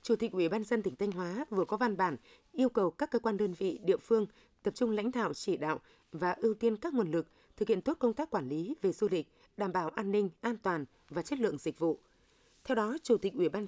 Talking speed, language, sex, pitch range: 265 wpm, Vietnamese, female, 180-230 Hz